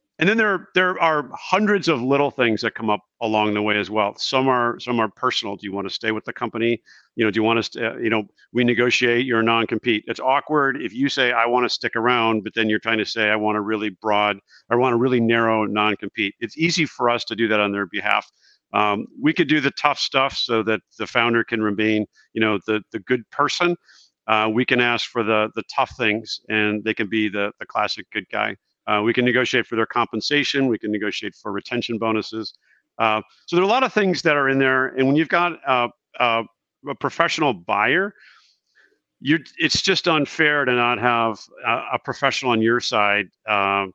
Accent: American